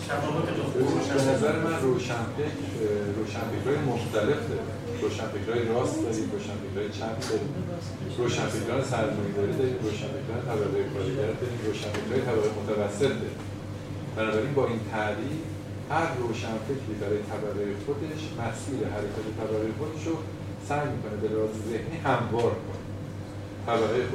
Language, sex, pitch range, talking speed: Persian, male, 105-130 Hz, 90 wpm